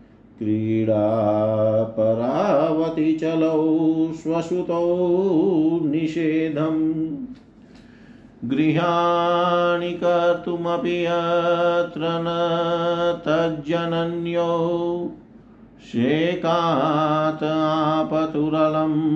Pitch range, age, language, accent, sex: 145-165 Hz, 50-69, Hindi, native, male